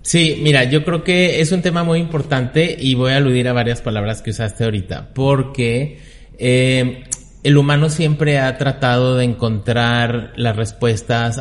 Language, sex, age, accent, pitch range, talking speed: Spanish, male, 30-49, Mexican, 110-135 Hz, 165 wpm